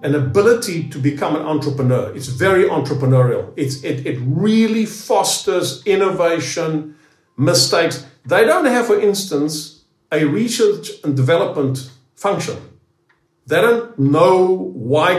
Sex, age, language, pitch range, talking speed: male, 50-69, English, 145-205 Hz, 120 wpm